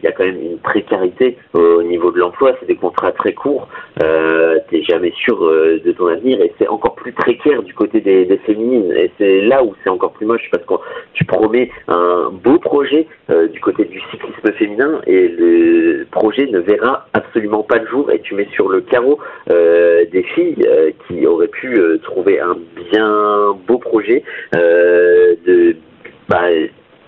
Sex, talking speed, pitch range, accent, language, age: male, 190 wpm, 325-460 Hz, French, French, 40-59